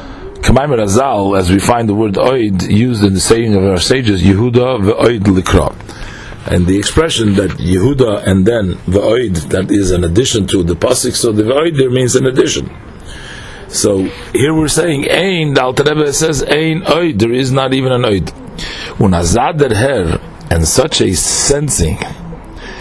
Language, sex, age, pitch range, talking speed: English, male, 50-69, 95-125 Hz, 165 wpm